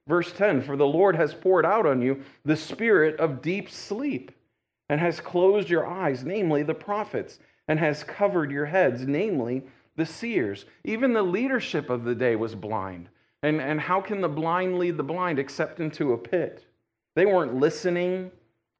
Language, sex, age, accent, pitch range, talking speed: English, male, 40-59, American, 115-165 Hz, 175 wpm